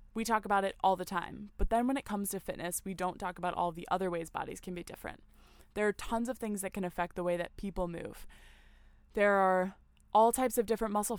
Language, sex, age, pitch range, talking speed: English, female, 20-39, 185-215 Hz, 245 wpm